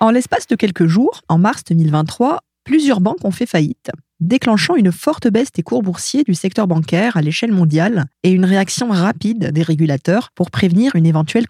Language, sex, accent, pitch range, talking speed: French, female, French, 175-240 Hz, 190 wpm